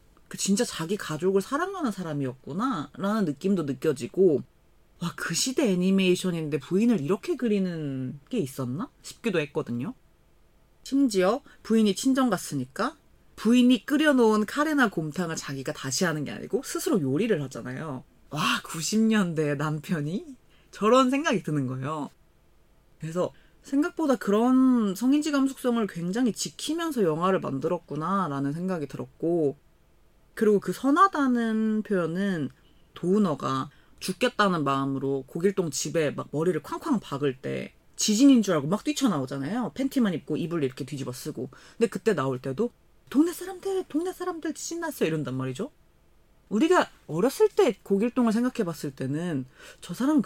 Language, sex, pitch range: Korean, female, 150-245 Hz